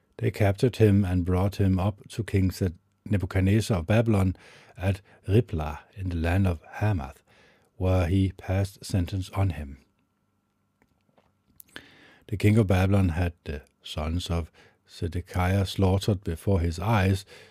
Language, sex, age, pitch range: English, male, 50-69, 90-105 Hz